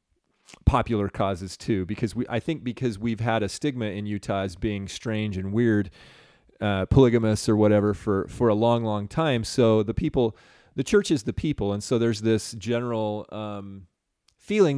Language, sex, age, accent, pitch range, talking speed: English, male, 30-49, American, 115-155 Hz, 175 wpm